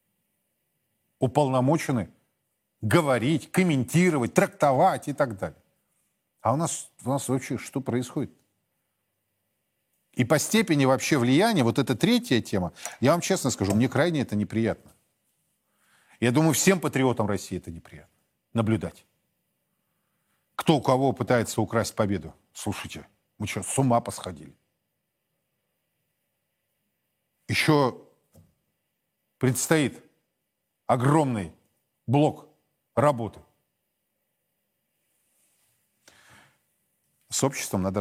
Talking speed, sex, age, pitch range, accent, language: 95 wpm, male, 40-59, 105-145 Hz, native, Russian